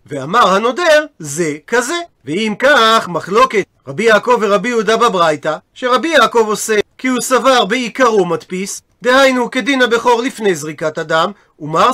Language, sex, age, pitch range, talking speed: Hebrew, male, 40-59, 195-250 Hz, 135 wpm